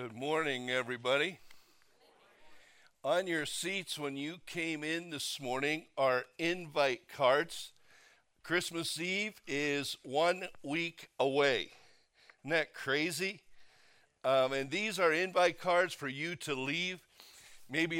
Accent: American